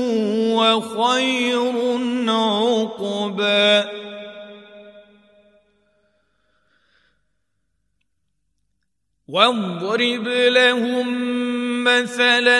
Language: Arabic